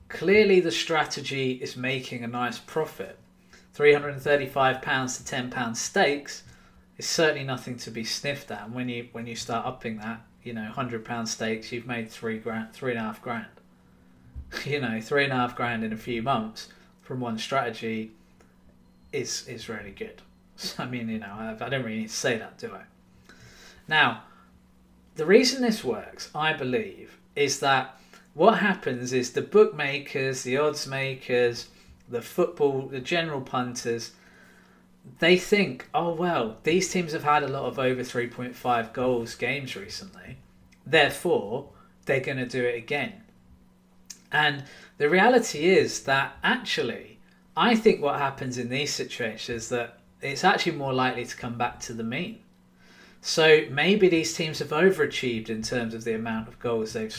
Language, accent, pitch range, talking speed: English, British, 115-145 Hz, 165 wpm